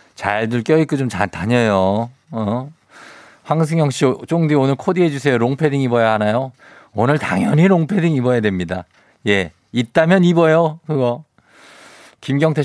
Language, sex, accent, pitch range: Korean, male, native, 105-145 Hz